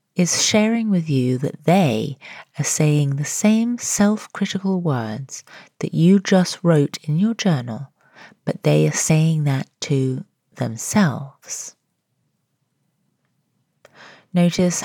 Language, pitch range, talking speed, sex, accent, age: English, 135-190 Hz, 110 wpm, female, British, 30-49